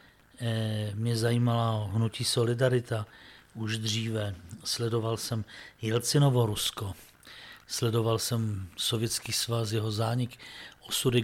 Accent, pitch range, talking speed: native, 110-125 Hz, 90 wpm